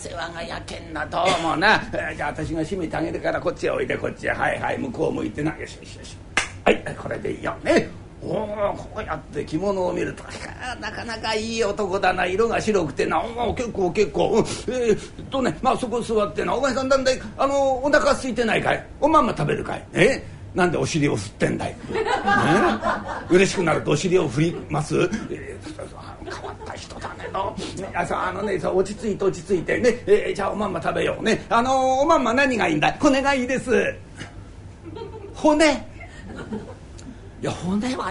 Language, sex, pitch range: Japanese, male, 205-275 Hz